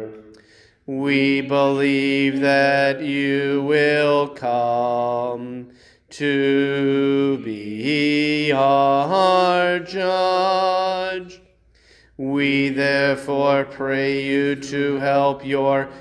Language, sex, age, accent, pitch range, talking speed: English, male, 40-59, American, 135-180 Hz, 65 wpm